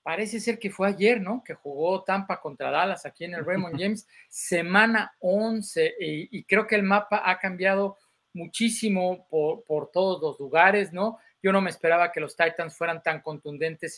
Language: Spanish